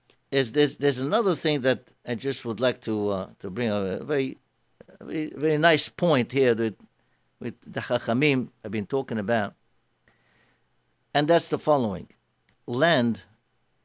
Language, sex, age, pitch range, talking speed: English, male, 60-79, 120-165 Hz, 145 wpm